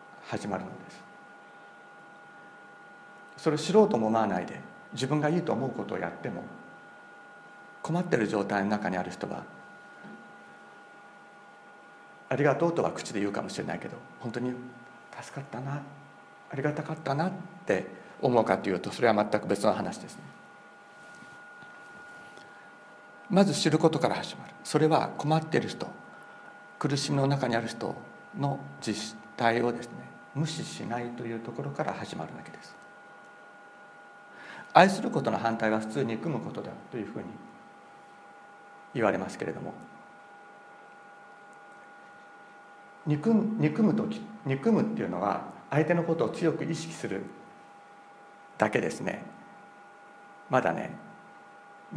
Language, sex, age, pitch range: Japanese, male, 50-69, 155-205 Hz